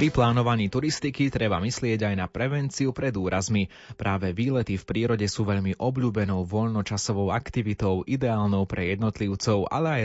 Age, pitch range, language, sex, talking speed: 20-39, 100-120 Hz, Slovak, male, 145 wpm